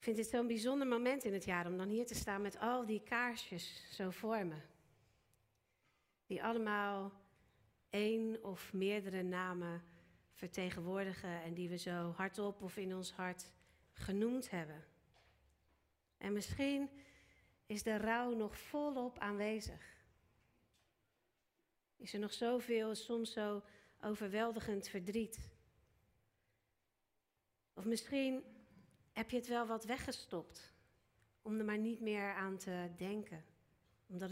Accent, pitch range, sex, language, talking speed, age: Dutch, 165-225 Hz, female, Dutch, 120 wpm, 50-69